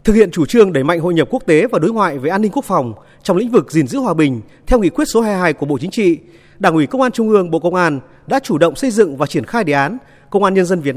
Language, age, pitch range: Vietnamese, 30-49, 160-235 Hz